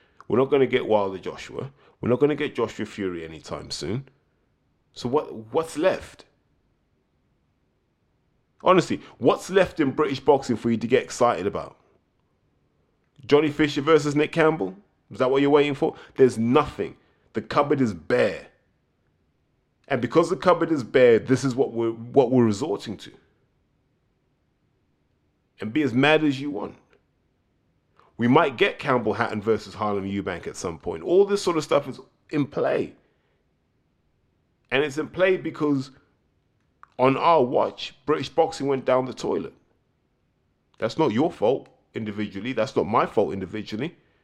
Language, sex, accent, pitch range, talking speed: English, male, British, 115-150 Hz, 155 wpm